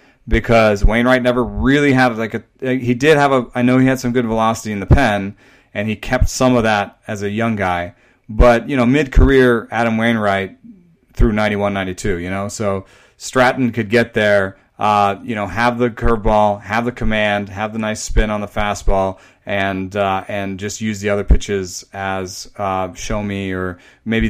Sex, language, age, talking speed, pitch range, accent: male, English, 30-49, 200 wpm, 100-120 Hz, American